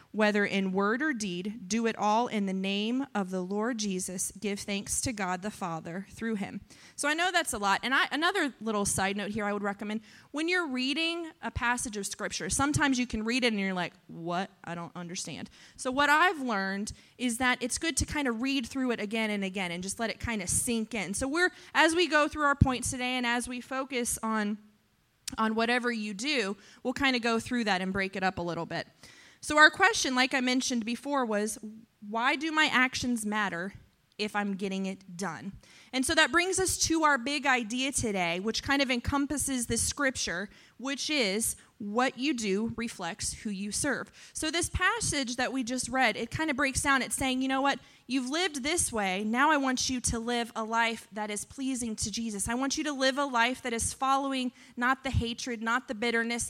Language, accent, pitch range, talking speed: English, American, 210-270 Hz, 220 wpm